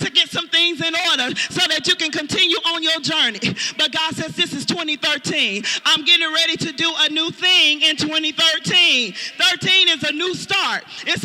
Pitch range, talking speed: 305-365 Hz, 190 wpm